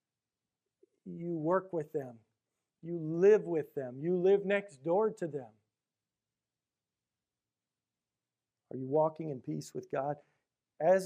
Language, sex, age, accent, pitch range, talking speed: English, male, 40-59, American, 130-205 Hz, 120 wpm